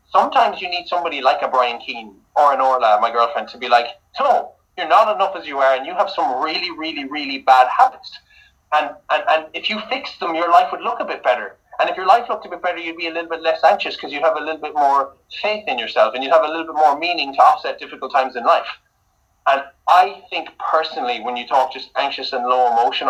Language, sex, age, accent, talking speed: English, male, 30-49, Irish, 255 wpm